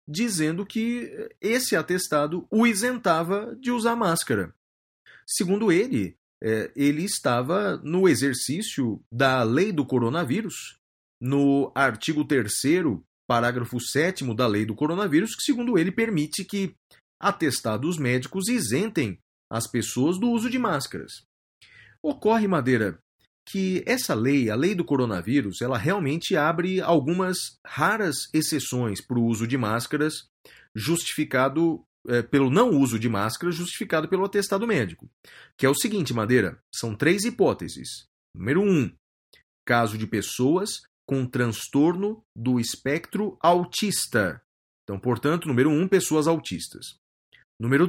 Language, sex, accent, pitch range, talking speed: Portuguese, male, Brazilian, 125-195 Hz, 120 wpm